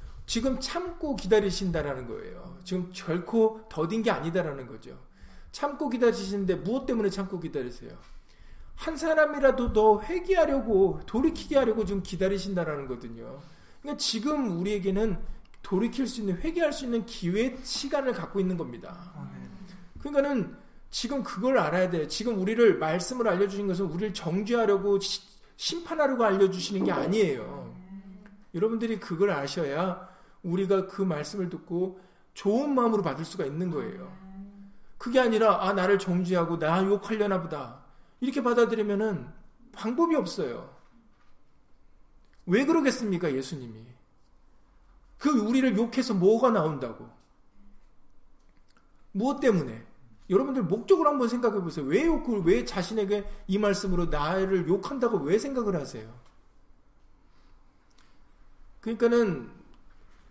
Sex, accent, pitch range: male, native, 180-240 Hz